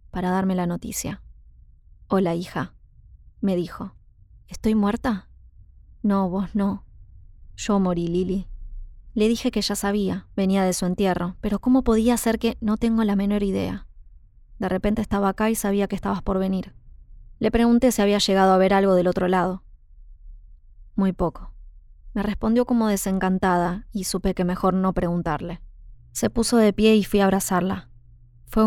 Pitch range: 125-205 Hz